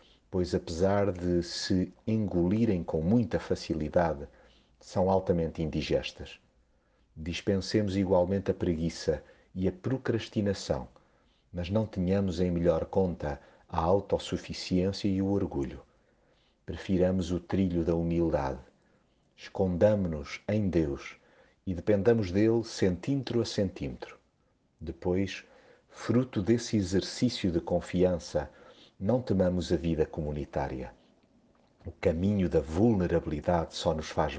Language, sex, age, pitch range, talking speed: Portuguese, male, 50-69, 85-105 Hz, 105 wpm